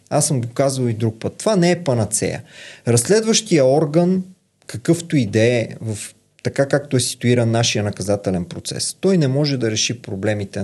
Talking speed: 165 wpm